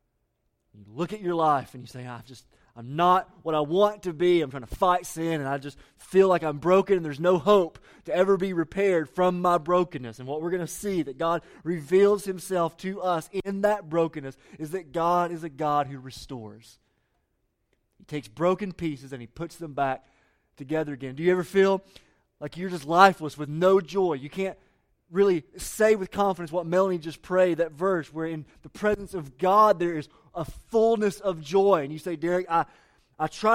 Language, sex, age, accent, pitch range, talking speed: English, male, 30-49, American, 140-180 Hz, 205 wpm